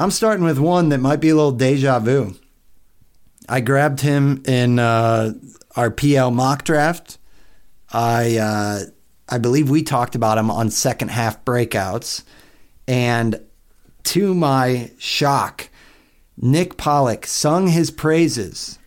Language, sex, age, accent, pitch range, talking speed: English, male, 40-59, American, 115-145 Hz, 130 wpm